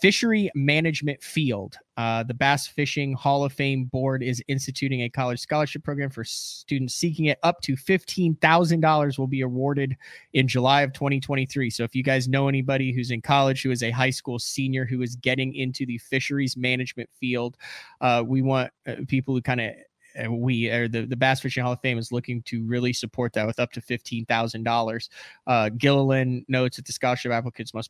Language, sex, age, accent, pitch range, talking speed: English, male, 20-39, American, 125-145 Hz, 200 wpm